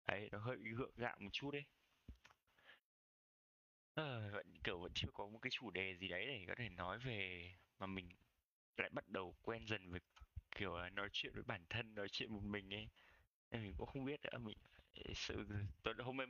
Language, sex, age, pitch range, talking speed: Vietnamese, male, 20-39, 90-115 Hz, 200 wpm